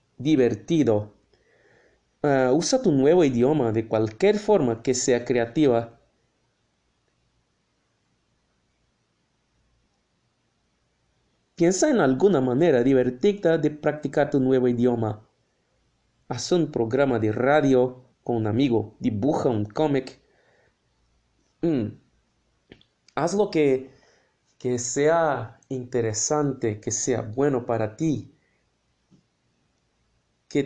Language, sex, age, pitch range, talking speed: English, male, 30-49, 115-150 Hz, 85 wpm